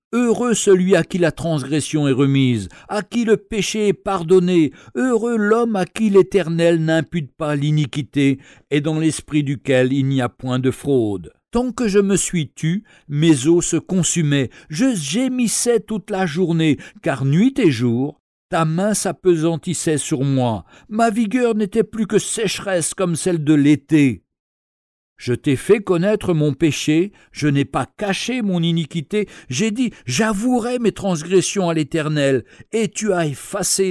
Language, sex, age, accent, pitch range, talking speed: French, male, 60-79, French, 145-210 Hz, 160 wpm